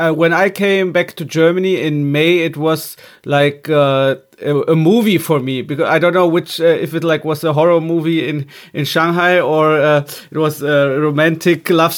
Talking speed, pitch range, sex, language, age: 205 wpm, 145-165 Hz, male, German, 30-49